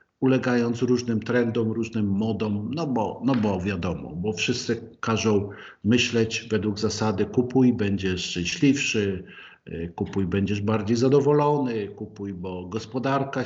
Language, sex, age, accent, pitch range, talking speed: Polish, male, 50-69, native, 100-120 Hz, 110 wpm